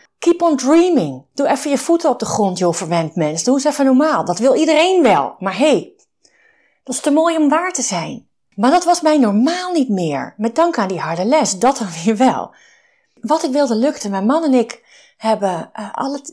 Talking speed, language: 215 wpm, Dutch